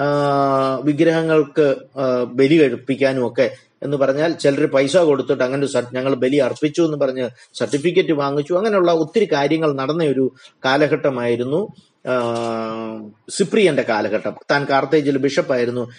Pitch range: 130-175 Hz